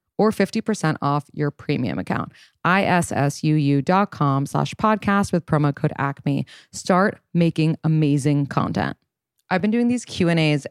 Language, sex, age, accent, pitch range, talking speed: English, female, 20-39, American, 145-190 Hz, 125 wpm